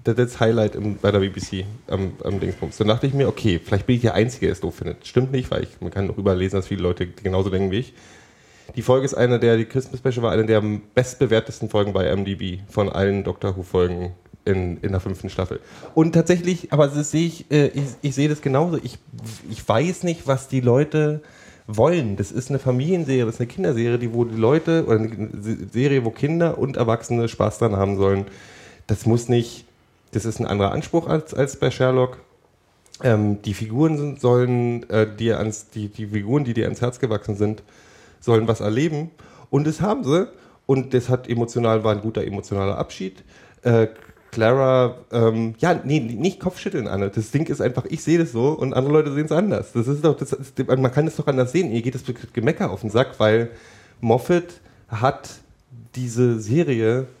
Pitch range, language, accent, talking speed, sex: 105-135 Hz, German, German, 205 wpm, male